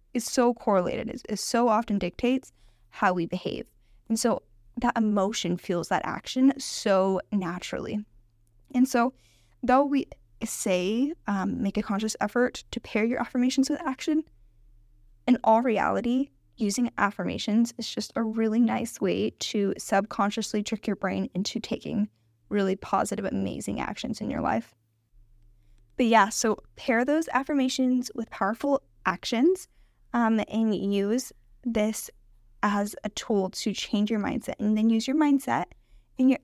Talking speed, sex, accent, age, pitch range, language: 145 wpm, female, American, 10-29, 165-245 Hz, English